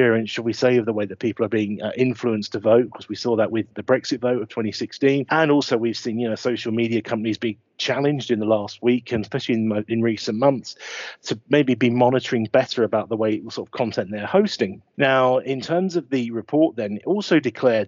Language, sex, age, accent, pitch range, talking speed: English, male, 40-59, British, 115-135 Hz, 230 wpm